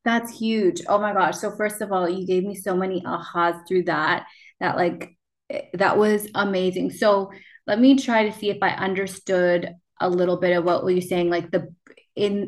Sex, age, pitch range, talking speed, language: female, 20-39, 180-200 Hz, 200 wpm, English